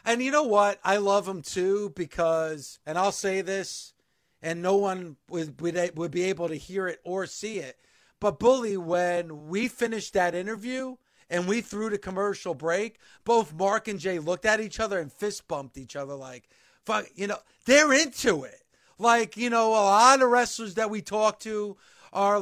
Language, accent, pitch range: English, American, 185-230 Hz